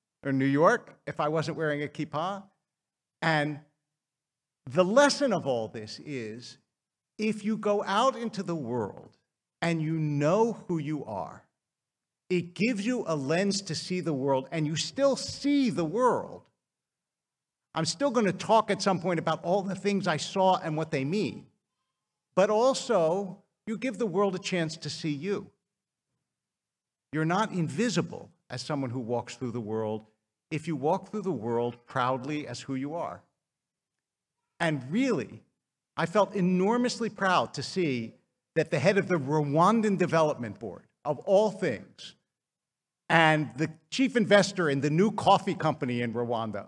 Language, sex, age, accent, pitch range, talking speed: English, male, 50-69, American, 145-195 Hz, 160 wpm